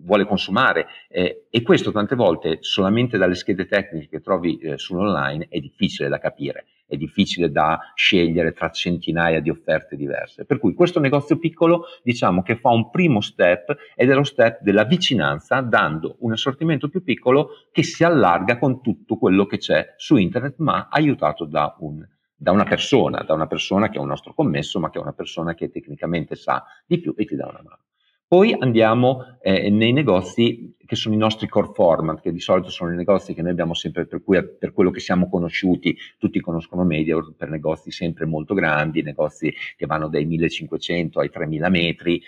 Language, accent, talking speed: Italian, native, 190 wpm